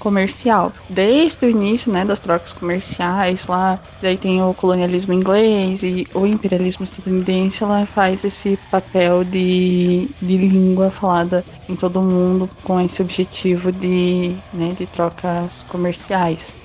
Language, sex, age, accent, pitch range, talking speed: Portuguese, female, 20-39, Brazilian, 180-205 Hz, 135 wpm